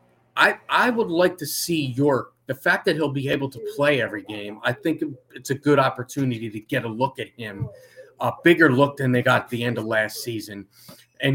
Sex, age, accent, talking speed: male, 30-49, American, 220 wpm